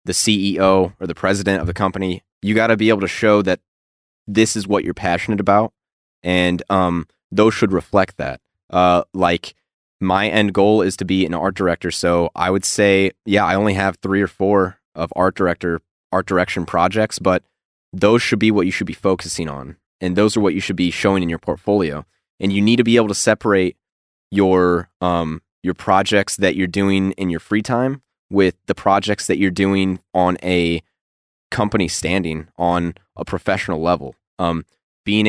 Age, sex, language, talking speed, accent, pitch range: 20-39, male, English, 190 wpm, American, 90-105 Hz